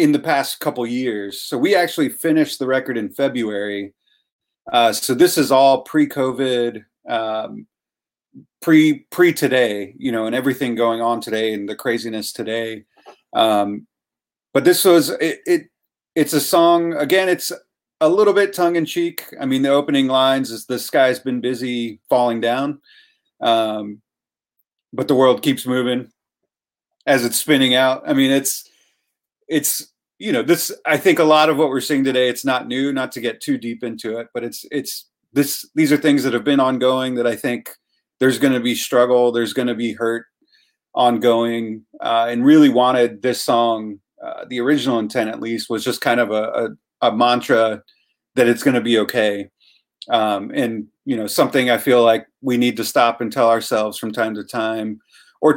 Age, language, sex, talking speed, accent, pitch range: 30-49, English, male, 175 wpm, American, 115-145 Hz